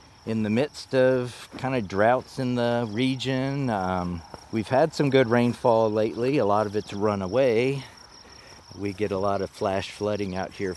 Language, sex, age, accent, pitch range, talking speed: English, male, 40-59, American, 105-130 Hz, 180 wpm